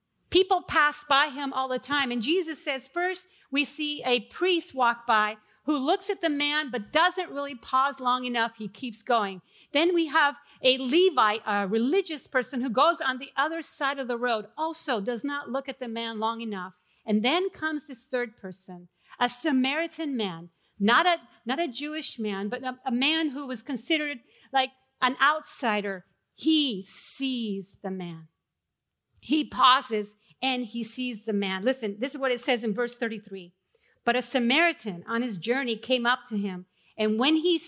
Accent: American